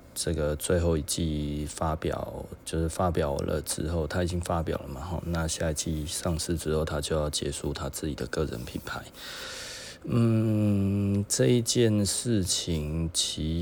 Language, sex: Chinese, male